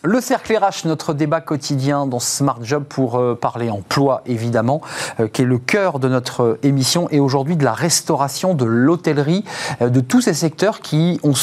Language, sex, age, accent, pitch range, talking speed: French, male, 40-59, French, 125-160 Hz, 175 wpm